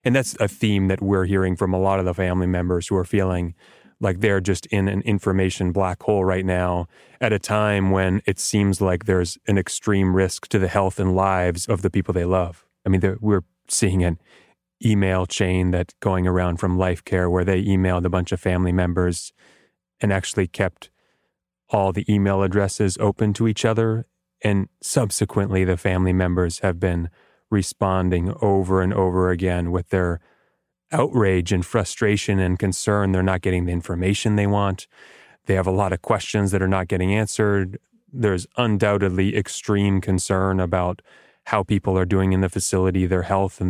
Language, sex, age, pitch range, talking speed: English, male, 30-49, 90-100 Hz, 180 wpm